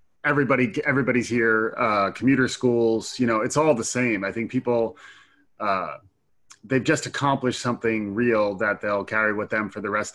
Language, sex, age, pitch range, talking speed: English, male, 30-49, 105-130 Hz, 170 wpm